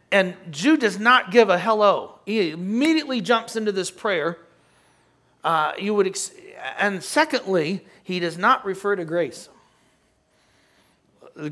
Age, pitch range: 40-59, 180-240 Hz